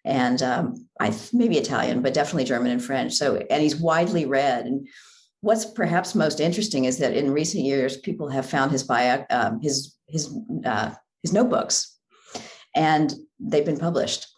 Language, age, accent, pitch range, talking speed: English, 50-69, American, 135-170 Hz, 170 wpm